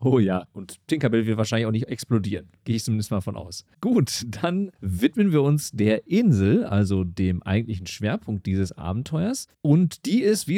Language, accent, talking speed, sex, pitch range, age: German, German, 180 wpm, male, 100-135 Hz, 40-59